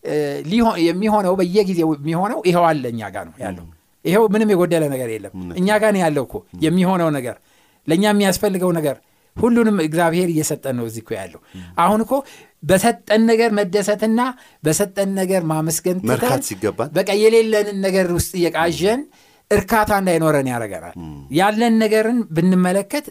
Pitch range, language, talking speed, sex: 145-210 Hz, Amharic, 120 wpm, male